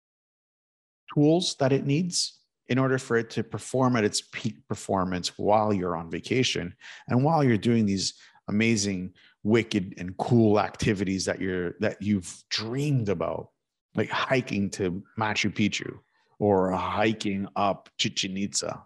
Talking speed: 135 wpm